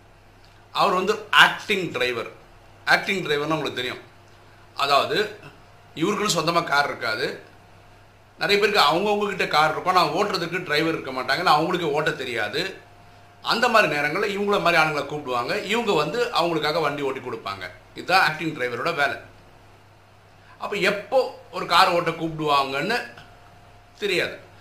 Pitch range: 115-175 Hz